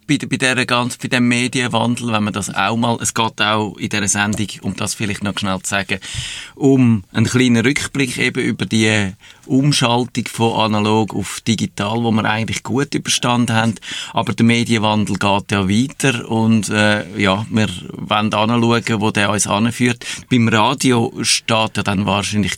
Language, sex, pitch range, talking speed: German, male, 100-120 Hz, 175 wpm